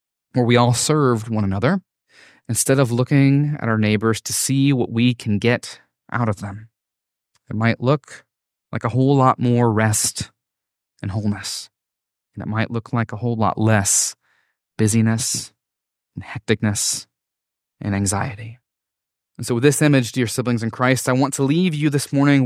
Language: English